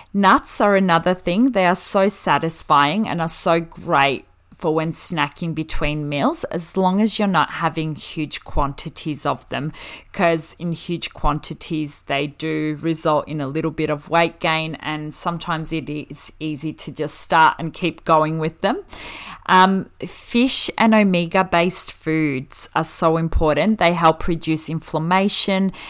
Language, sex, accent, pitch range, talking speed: English, female, Australian, 150-180 Hz, 155 wpm